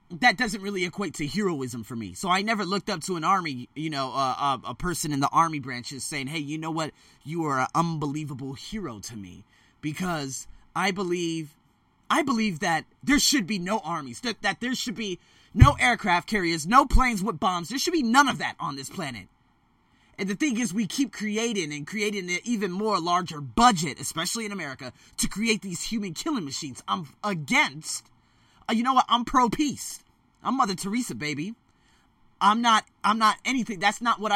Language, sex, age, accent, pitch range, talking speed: English, male, 20-39, American, 150-220 Hz, 195 wpm